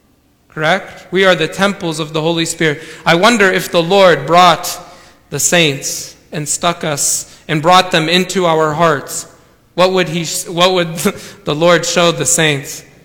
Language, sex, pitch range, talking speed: English, male, 160-200 Hz, 165 wpm